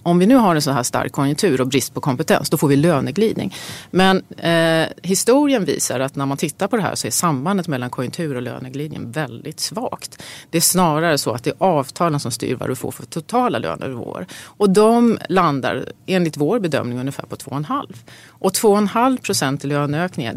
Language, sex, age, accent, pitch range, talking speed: Swedish, female, 30-49, native, 140-185 Hz, 205 wpm